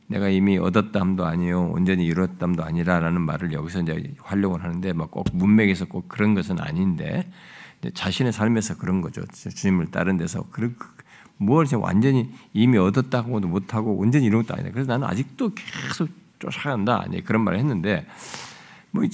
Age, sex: 50-69, male